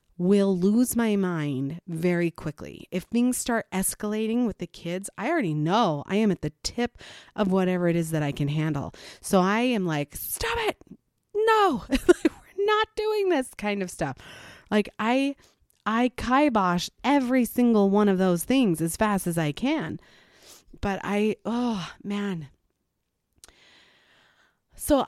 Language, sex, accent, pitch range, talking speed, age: English, female, American, 180-260 Hz, 150 wpm, 30-49